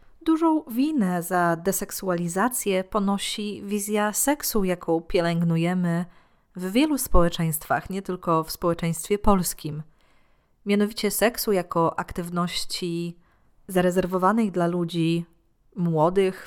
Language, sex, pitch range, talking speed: Polish, female, 175-210 Hz, 90 wpm